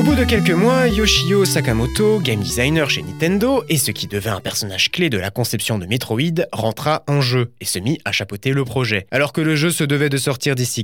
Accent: French